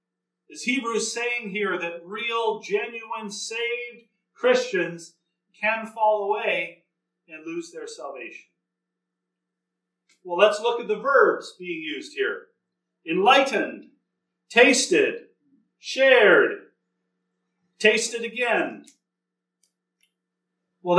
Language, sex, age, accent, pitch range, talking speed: English, male, 40-59, American, 175-240 Hz, 90 wpm